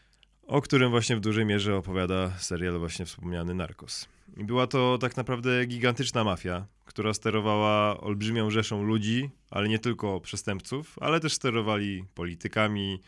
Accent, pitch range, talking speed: native, 95-115 Hz, 140 wpm